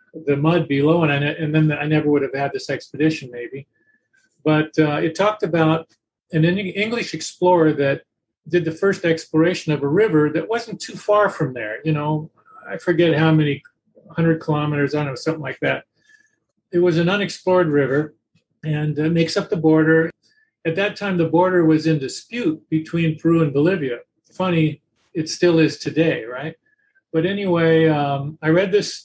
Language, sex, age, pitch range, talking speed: English, male, 40-59, 150-175 Hz, 180 wpm